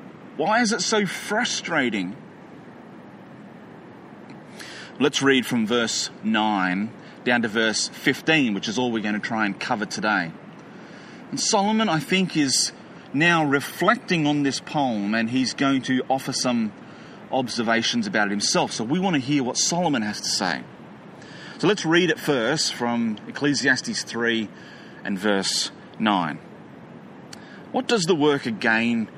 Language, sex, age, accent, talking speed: English, male, 30-49, Australian, 145 wpm